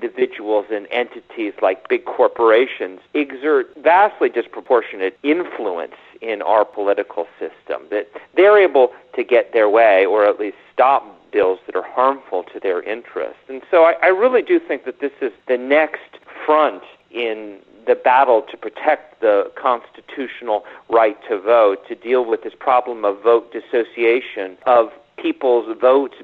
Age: 40-59